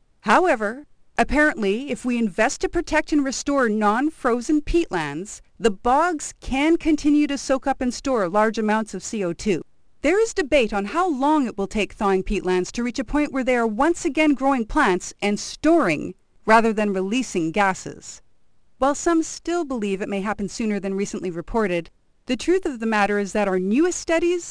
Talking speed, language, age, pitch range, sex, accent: 180 wpm, English, 40-59, 195-270 Hz, female, American